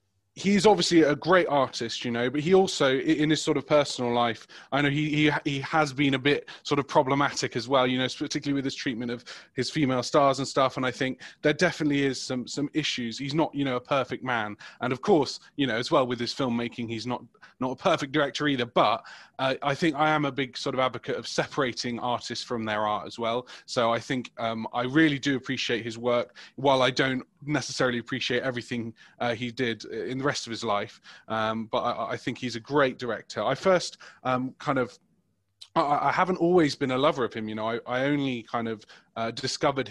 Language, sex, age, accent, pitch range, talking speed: English, male, 20-39, British, 120-145 Hz, 225 wpm